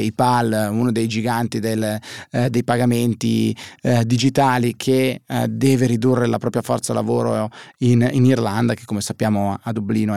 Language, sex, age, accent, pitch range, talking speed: Italian, male, 30-49, native, 115-135 Hz, 150 wpm